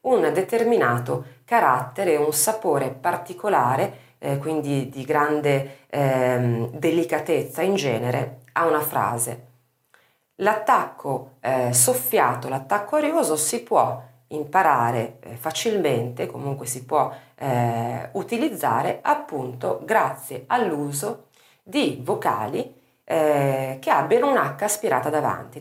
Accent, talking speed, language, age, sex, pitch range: native, 100 wpm, Italian, 40-59, female, 130-190 Hz